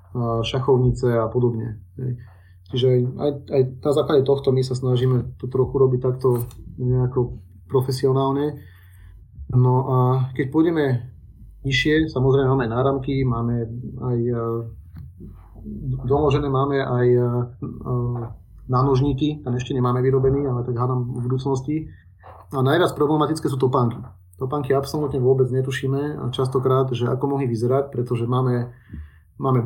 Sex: male